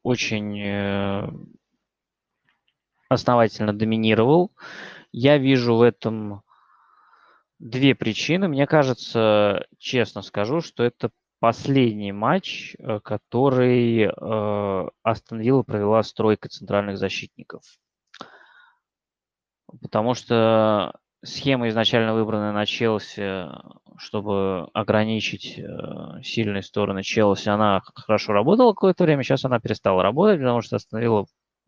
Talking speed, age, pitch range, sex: 95 wpm, 20-39, 105-135 Hz, male